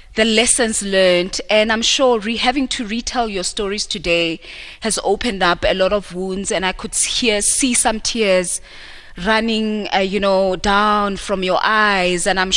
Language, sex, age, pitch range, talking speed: English, female, 20-39, 190-225 Hz, 175 wpm